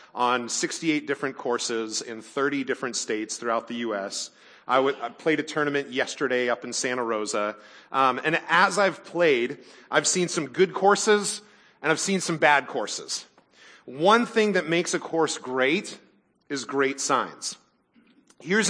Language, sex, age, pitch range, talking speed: English, male, 40-59, 130-170 Hz, 155 wpm